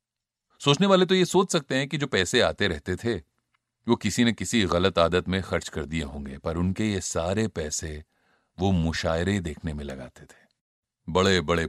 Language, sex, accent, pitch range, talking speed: Hindi, male, native, 80-100 Hz, 190 wpm